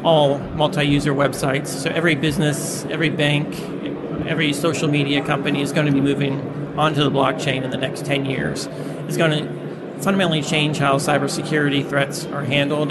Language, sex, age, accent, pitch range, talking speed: English, male, 40-59, American, 145-170 Hz, 165 wpm